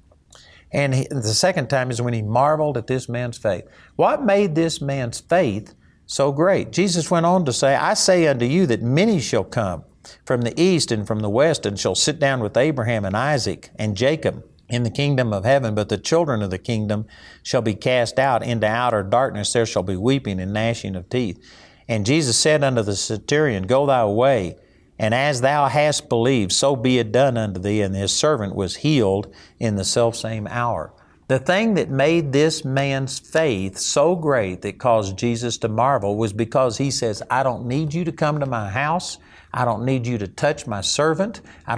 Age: 60-79